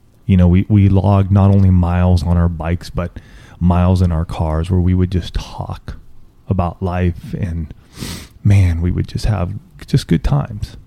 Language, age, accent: English, 30-49, American